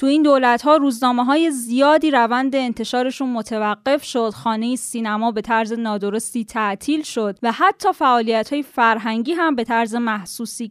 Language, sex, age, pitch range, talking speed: Persian, female, 10-29, 225-285 Hz, 135 wpm